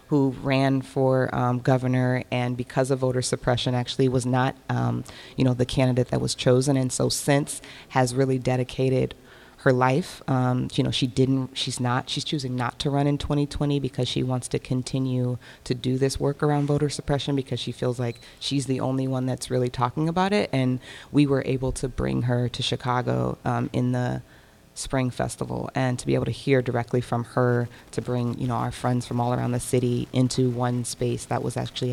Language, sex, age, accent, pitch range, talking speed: English, female, 20-39, American, 125-135 Hz, 205 wpm